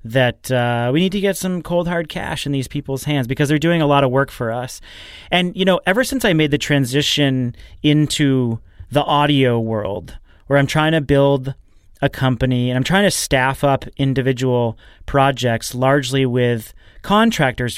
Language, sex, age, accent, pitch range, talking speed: English, male, 30-49, American, 125-155 Hz, 180 wpm